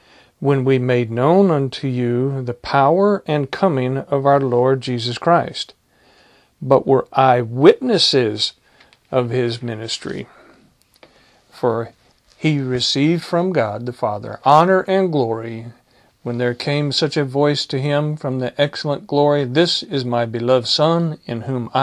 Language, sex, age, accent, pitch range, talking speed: English, male, 50-69, American, 125-150 Hz, 135 wpm